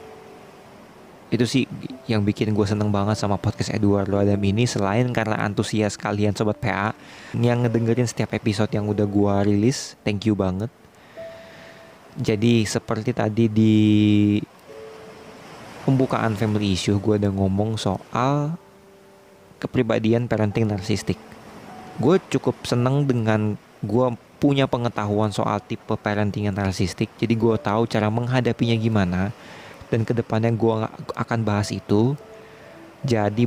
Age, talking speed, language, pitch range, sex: 20-39, 120 wpm, Indonesian, 100-120 Hz, male